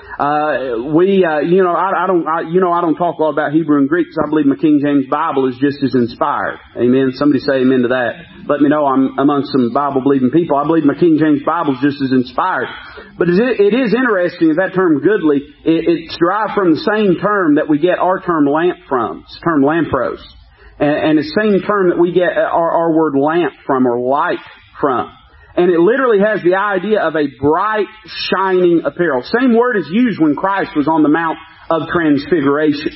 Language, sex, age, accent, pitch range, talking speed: English, male, 40-59, American, 145-200 Hz, 215 wpm